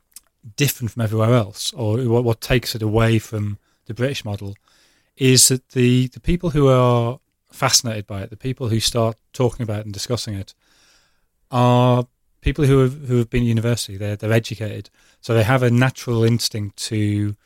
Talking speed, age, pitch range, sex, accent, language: 170 wpm, 30-49, 110-130 Hz, male, British, English